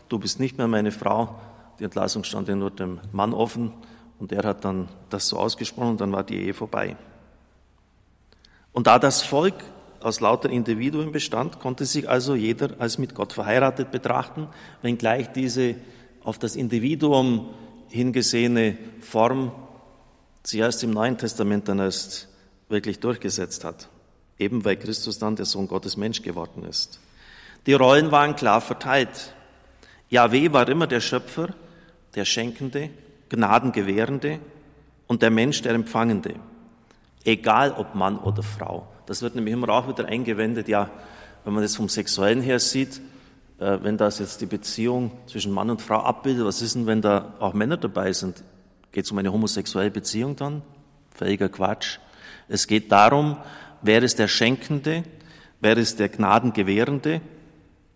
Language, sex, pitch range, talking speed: German, male, 105-130 Hz, 155 wpm